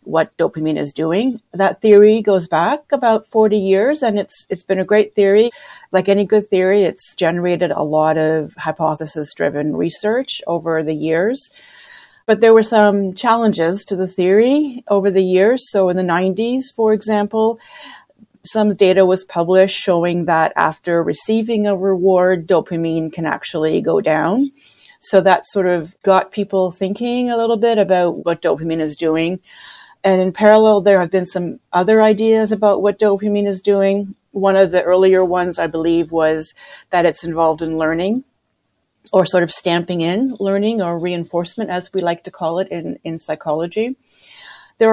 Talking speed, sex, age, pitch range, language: 165 wpm, female, 40-59, 170-215 Hz, English